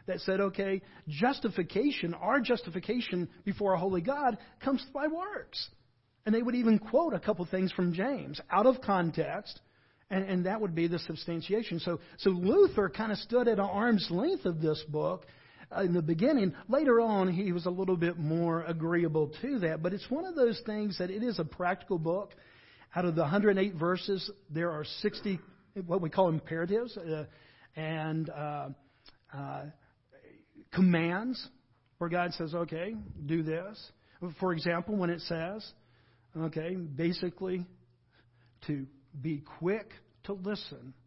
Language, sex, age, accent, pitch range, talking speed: English, male, 50-69, American, 160-205 Hz, 155 wpm